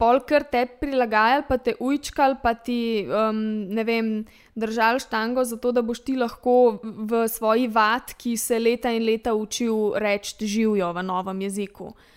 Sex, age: female, 20-39